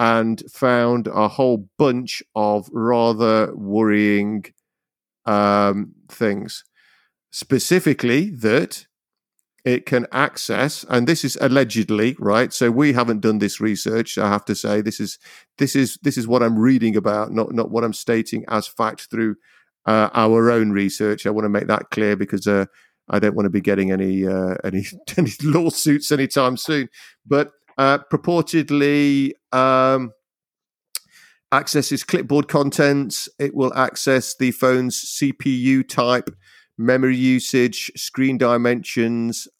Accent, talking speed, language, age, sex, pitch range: British, 140 wpm, English, 50-69, male, 110-140 Hz